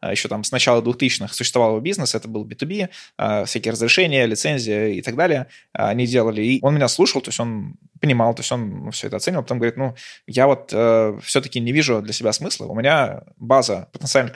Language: Russian